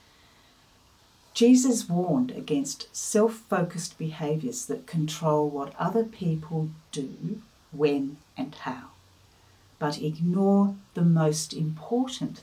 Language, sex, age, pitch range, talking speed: English, female, 60-79, 145-215 Hz, 90 wpm